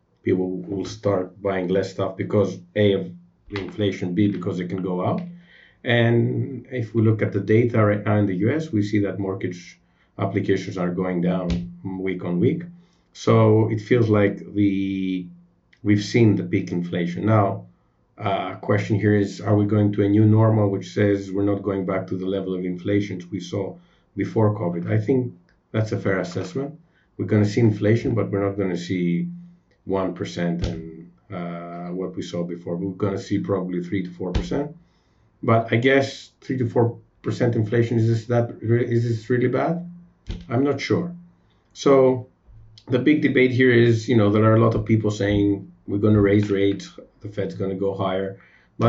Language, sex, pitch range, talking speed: English, male, 95-115 Hz, 185 wpm